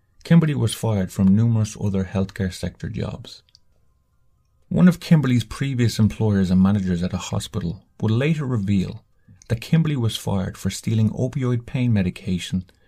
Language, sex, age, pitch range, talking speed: English, male, 30-49, 95-115 Hz, 145 wpm